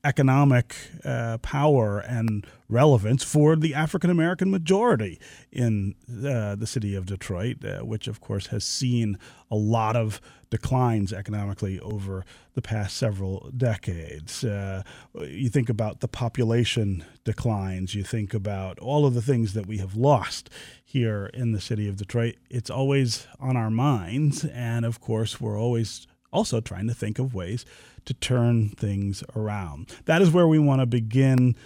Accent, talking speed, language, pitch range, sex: American, 155 wpm, English, 105-135 Hz, male